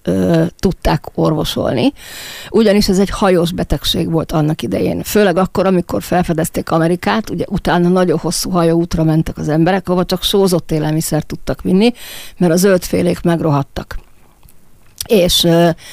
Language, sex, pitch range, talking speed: Hungarian, female, 160-190 Hz, 130 wpm